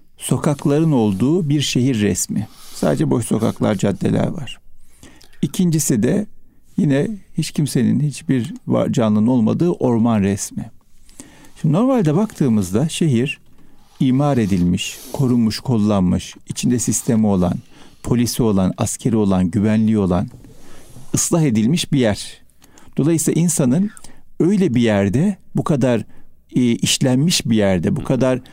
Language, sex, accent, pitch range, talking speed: Turkish, male, native, 115-160 Hz, 110 wpm